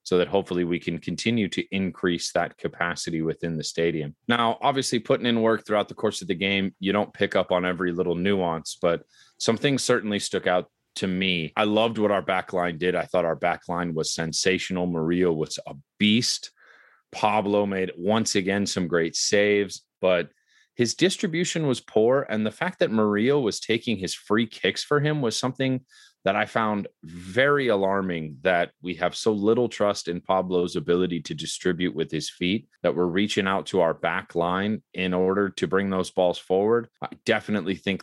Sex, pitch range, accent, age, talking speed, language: male, 90-105 Hz, American, 30-49, 190 wpm, English